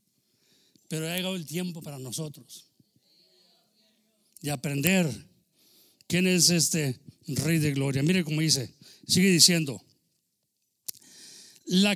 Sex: male